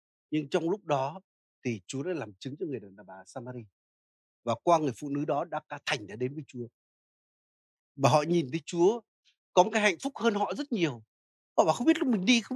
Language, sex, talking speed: Vietnamese, male, 235 wpm